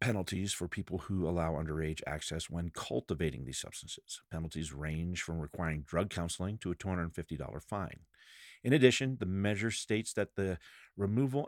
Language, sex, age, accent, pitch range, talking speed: English, male, 50-69, American, 85-120 Hz, 150 wpm